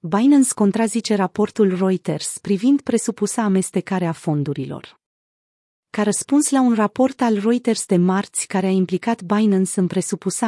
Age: 30-49